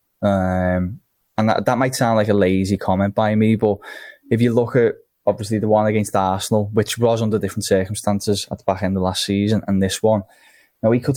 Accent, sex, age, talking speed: British, male, 10-29, 215 wpm